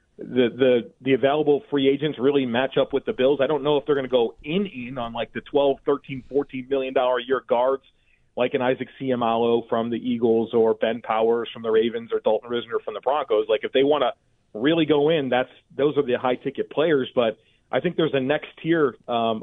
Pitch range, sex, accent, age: 120-145 Hz, male, American, 40-59